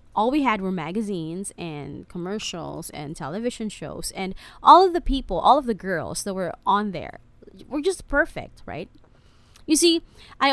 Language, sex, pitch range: English, female, 170-245 Hz